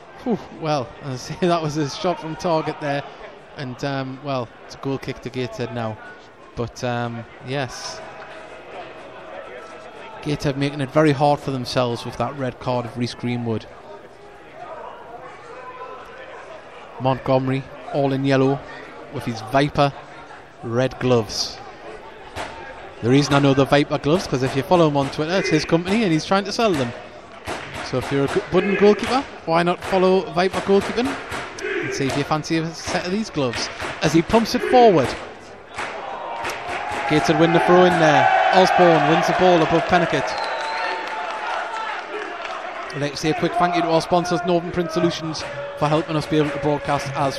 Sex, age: male, 20-39